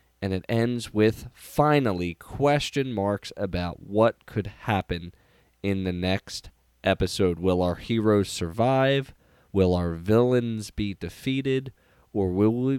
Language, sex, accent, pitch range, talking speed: English, male, American, 95-130 Hz, 125 wpm